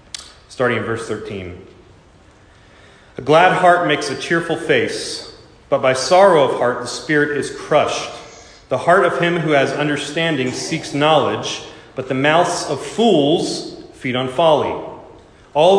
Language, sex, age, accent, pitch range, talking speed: English, male, 30-49, American, 120-160 Hz, 145 wpm